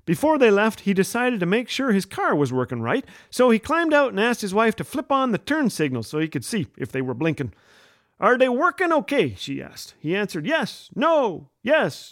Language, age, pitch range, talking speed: English, 40-59, 140-225 Hz, 230 wpm